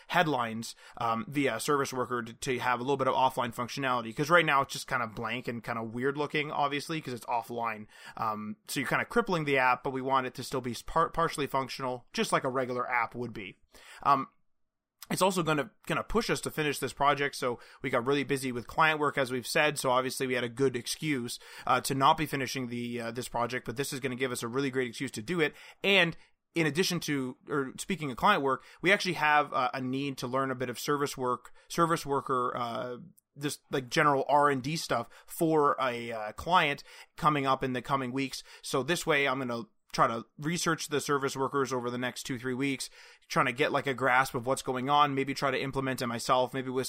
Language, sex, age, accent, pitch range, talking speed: English, male, 20-39, American, 125-150 Hz, 235 wpm